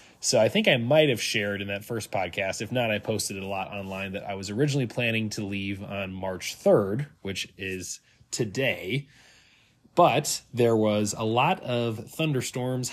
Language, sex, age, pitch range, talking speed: English, male, 20-39, 100-125 Hz, 180 wpm